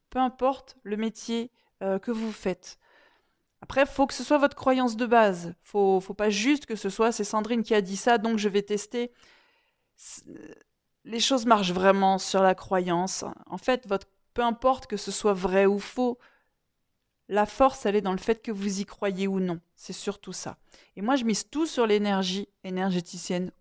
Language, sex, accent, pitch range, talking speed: French, female, French, 195-250 Hz, 195 wpm